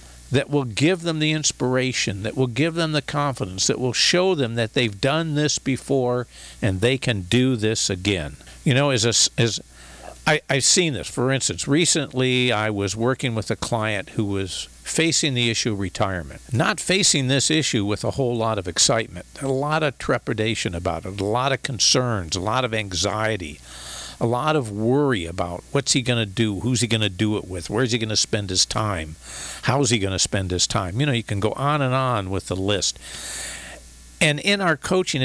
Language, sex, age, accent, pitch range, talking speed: English, male, 50-69, American, 100-140 Hz, 195 wpm